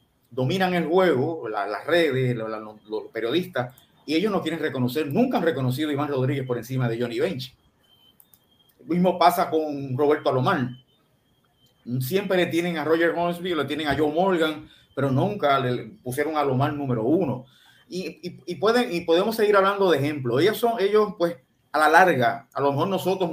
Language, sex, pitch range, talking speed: Spanish, male, 130-170 Hz, 175 wpm